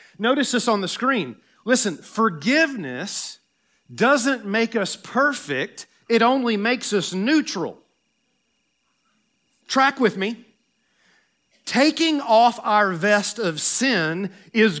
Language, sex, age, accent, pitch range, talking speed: English, male, 40-59, American, 200-270 Hz, 105 wpm